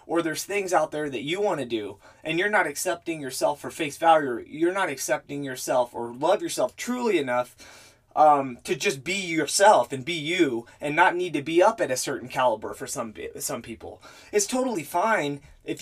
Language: English